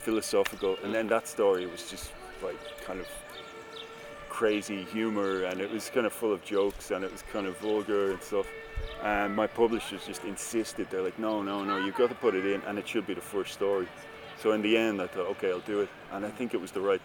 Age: 30-49